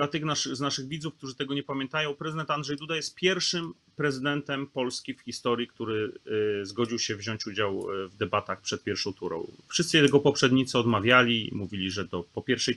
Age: 30-49